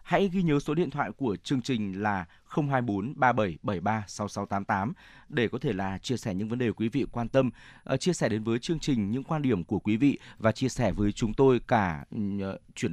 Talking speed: 215 wpm